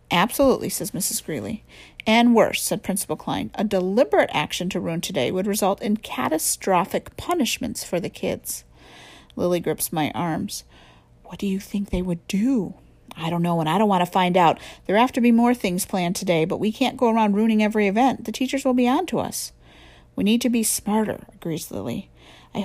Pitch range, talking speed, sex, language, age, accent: 180-245 Hz, 200 wpm, female, English, 50-69, American